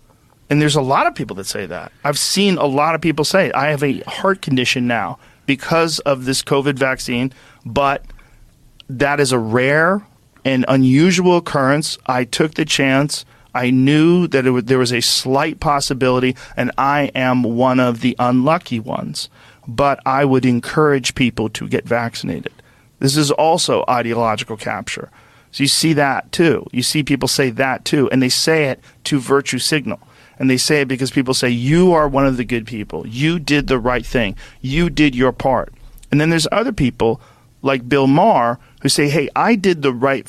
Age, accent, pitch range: 40-59, American, 125-150 Hz